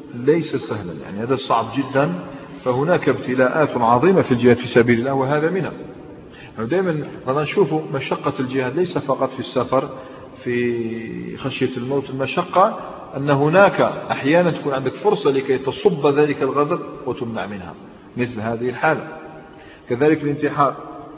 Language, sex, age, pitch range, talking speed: Arabic, male, 40-59, 120-150 Hz, 130 wpm